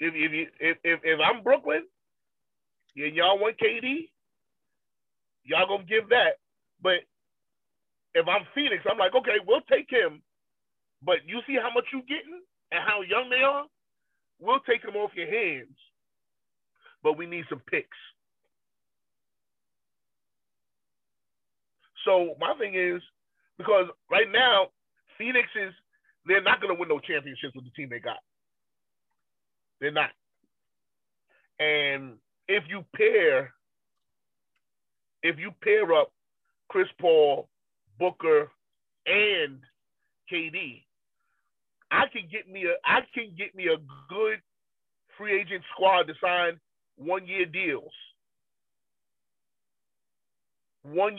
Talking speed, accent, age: 125 wpm, American, 30-49